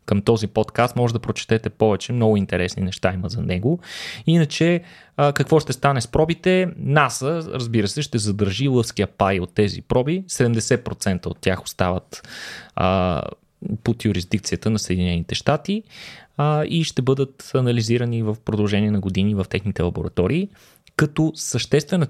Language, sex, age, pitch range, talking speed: Bulgarian, male, 20-39, 105-145 Hz, 140 wpm